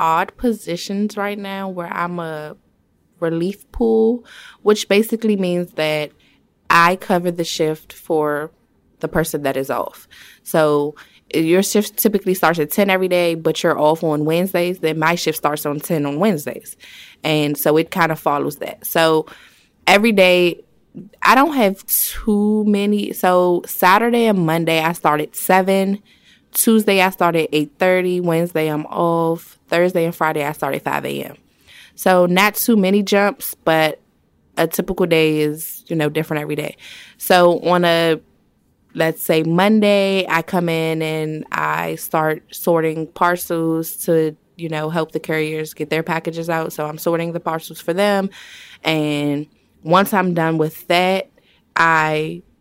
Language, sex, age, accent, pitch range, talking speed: English, female, 20-39, American, 155-190 Hz, 155 wpm